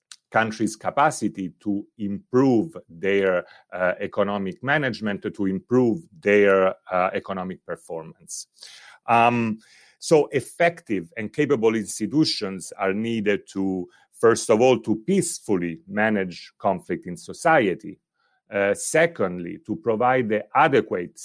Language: English